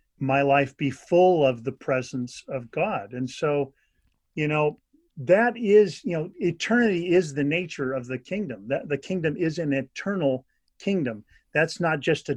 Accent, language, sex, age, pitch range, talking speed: American, English, male, 40-59, 130-170 Hz, 170 wpm